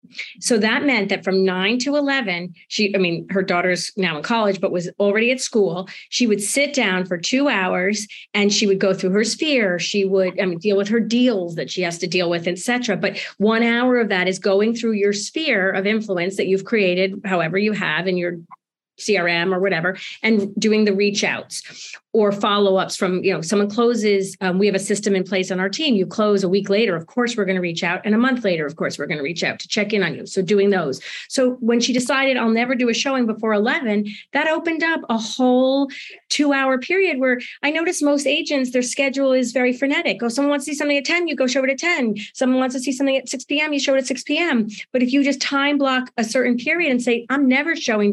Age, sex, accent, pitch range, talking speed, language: 30-49, female, American, 195-265 Hz, 245 wpm, English